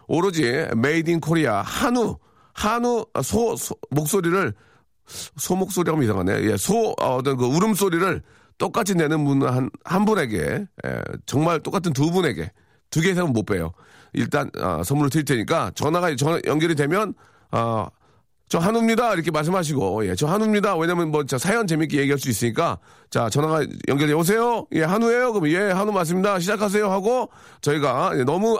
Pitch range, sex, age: 130-195 Hz, male, 40-59